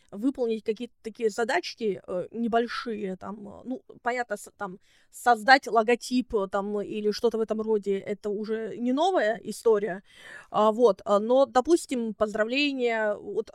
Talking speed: 120 wpm